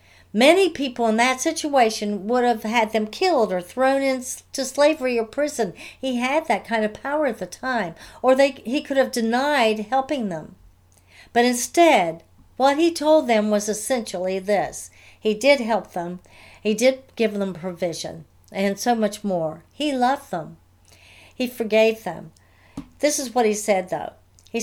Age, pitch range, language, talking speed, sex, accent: 60-79, 170-255 Hz, English, 165 wpm, female, American